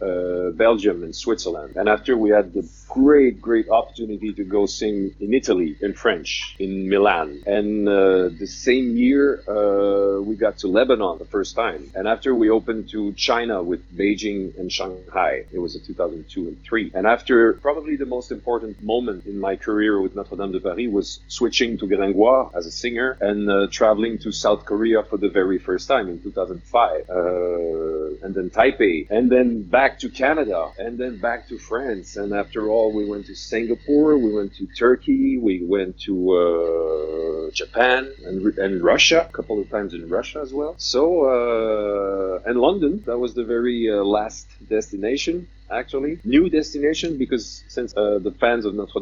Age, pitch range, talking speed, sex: 40-59, 95-125 Hz, 180 wpm, male